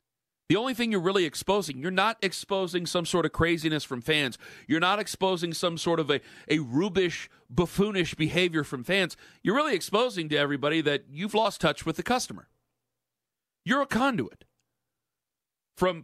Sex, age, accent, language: male, 40-59, American, English